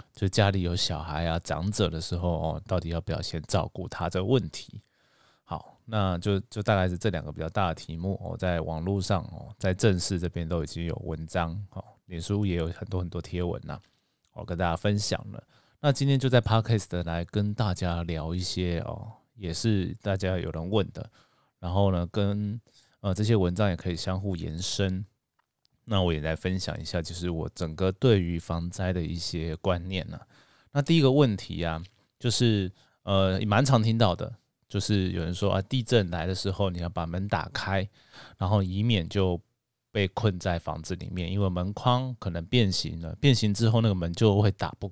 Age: 20-39